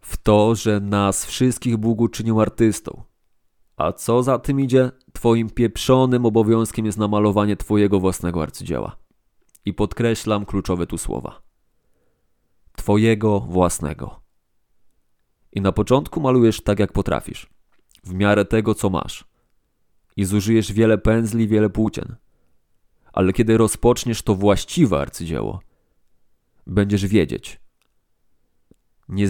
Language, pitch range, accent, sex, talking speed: Polish, 95-115 Hz, native, male, 115 wpm